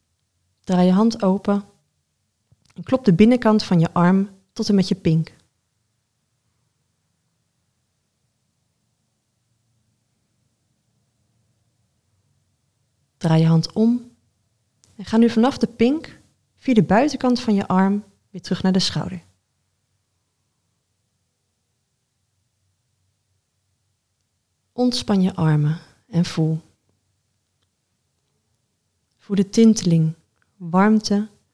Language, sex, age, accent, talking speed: Dutch, female, 30-49, Dutch, 90 wpm